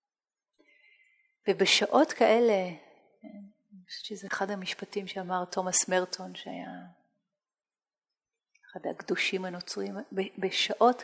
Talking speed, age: 80 wpm, 30-49